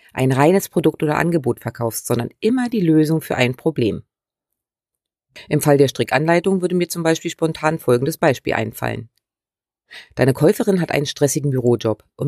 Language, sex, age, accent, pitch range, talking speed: German, female, 30-49, German, 130-170 Hz, 155 wpm